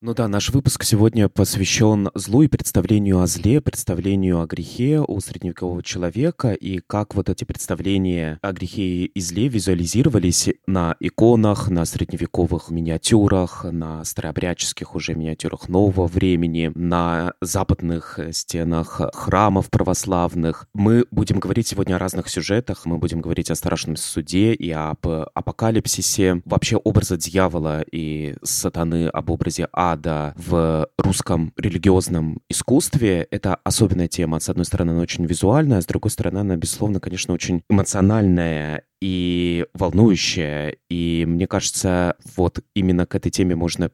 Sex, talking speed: male, 135 wpm